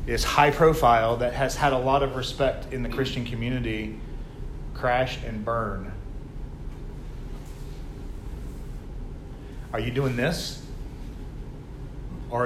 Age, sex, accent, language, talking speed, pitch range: 40-59, male, American, English, 105 wpm, 120-145 Hz